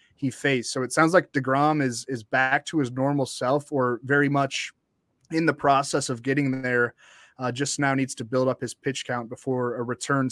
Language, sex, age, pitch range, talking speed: English, male, 20-39, 125-145 Hz, 210 wpm